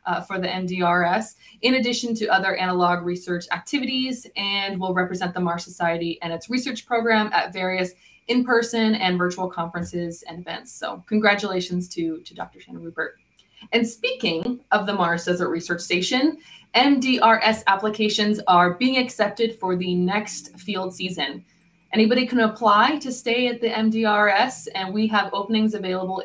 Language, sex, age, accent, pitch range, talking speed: English, female, 20-39, American, 180-225 Hz, 155 wpm